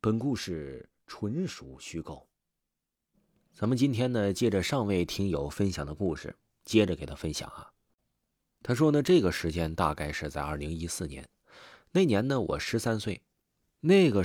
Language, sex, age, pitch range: Chinese, male, 30-49, 85-115 Hz